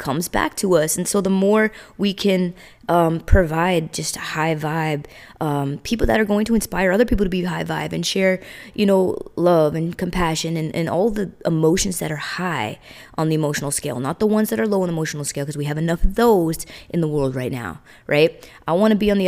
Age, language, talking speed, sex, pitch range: 20-39, English, 235 wpm, female, 155-185 Hz